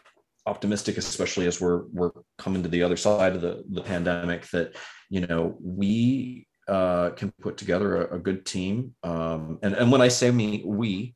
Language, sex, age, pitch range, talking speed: English, male, 30-49, 85-105 Hz, 185 wpm